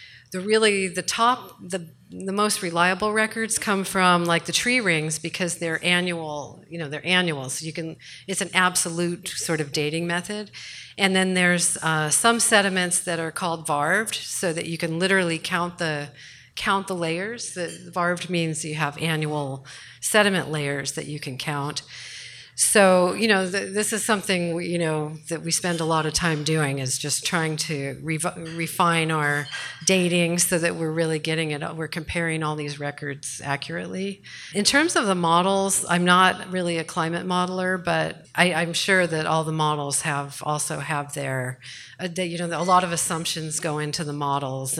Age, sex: 40-59, female